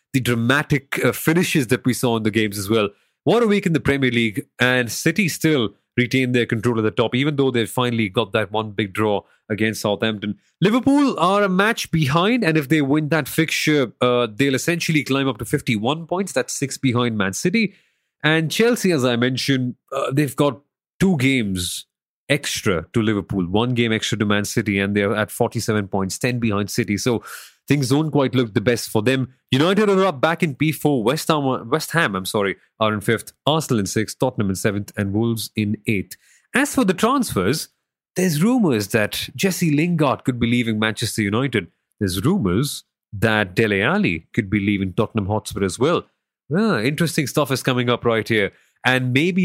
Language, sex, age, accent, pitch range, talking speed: English, male, 30-49, Indian, 110-150 Hz, 195 wpm